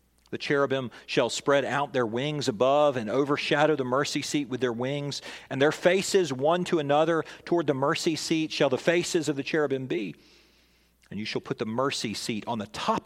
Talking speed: 200 wpm